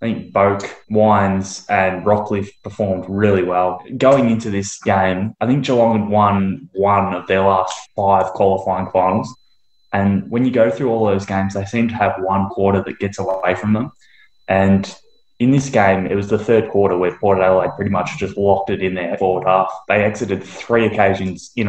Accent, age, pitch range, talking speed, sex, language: Australian, 10-29, 95-105 Hz, 190 wpm, male, English